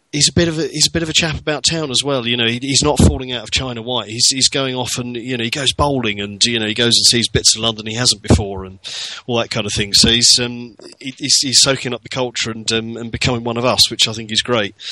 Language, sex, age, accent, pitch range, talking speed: English, male, 30-49, British, 105-130 Hz, 305 wpm